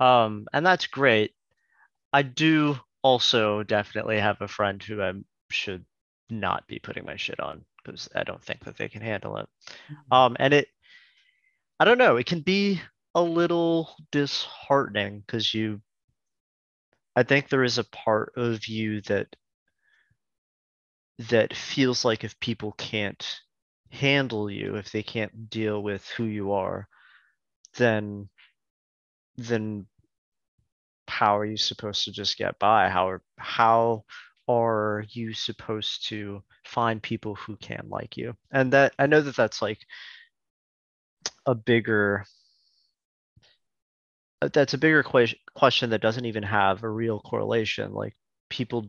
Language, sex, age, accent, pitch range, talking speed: English, male, 30-49, American, 100-125 Hz, 140 wpm